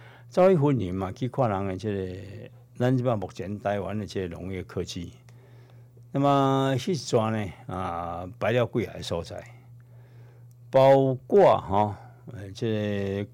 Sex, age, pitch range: male, 60-79, 105-130 Hz